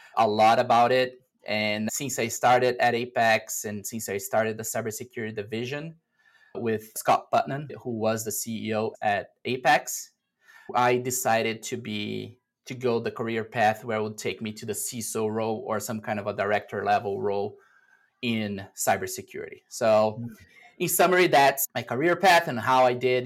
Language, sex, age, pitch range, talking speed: English, male, 20-39, 110-135 Hz, 170 wpm